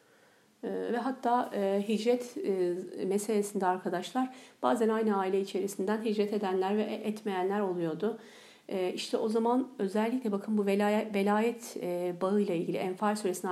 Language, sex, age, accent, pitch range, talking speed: Turkish, female, 50-69, native, 190-220 Hz, 135 wpm